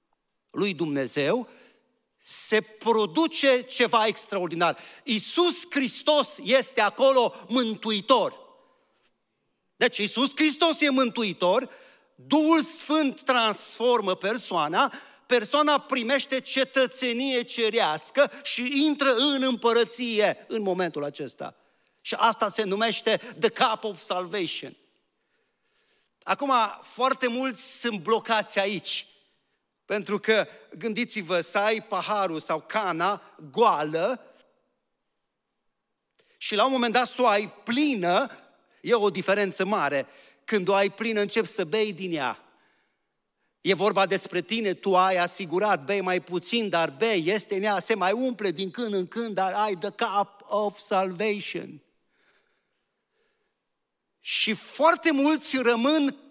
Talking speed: 115 wpm